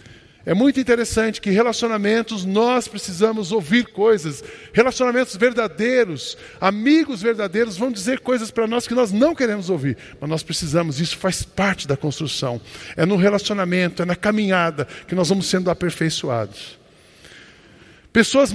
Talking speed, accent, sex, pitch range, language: 140 wpm, Brazilian, male, 175-240 Hz, Portuguese